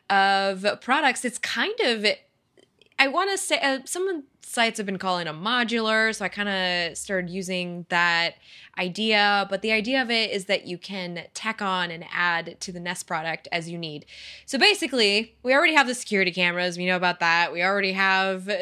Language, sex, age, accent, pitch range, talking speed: English, female, 20-39, American, 180-225 Hz, 190 wpm